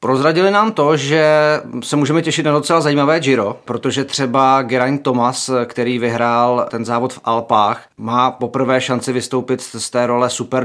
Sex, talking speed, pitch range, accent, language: male, 165 wpm, 120-130 Hz, native, Czech